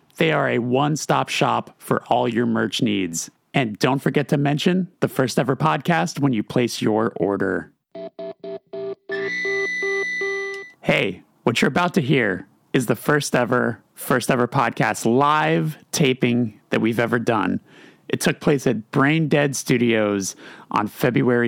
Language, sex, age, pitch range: English, male, 30-49, 110-145 Hz